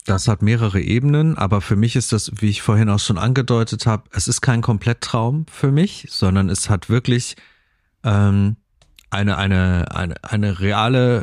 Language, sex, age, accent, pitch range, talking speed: German, male, 40-59, German, 100-120 Hz, 170 wpm